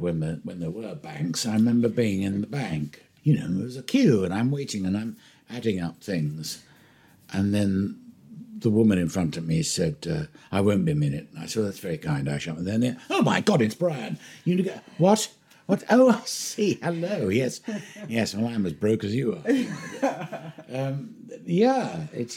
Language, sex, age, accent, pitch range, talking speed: English, male, 60-79, British, 100-165 Hz, 205 wpm